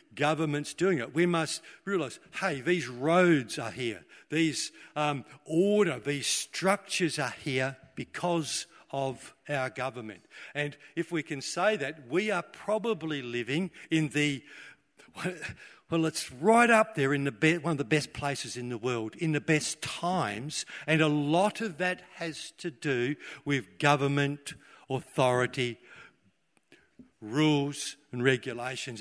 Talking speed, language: 140 wpm, English